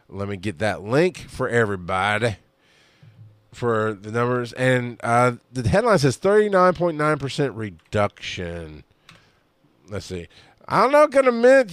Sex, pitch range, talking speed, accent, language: male, 110-140 Hz, 125 wpm, American, English